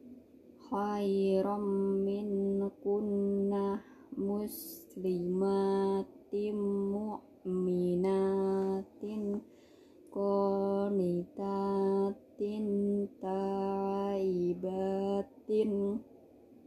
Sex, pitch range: female, 195-215 Hz